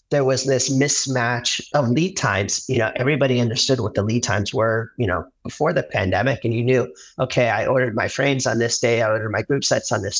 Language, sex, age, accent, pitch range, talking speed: English, male, 40-59, American, 120-145 Hz, 230 wpm